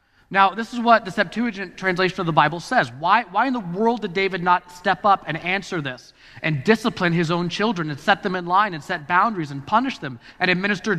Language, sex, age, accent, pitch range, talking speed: English, male, 30-49, American, 135-195 Hz, 230 wpm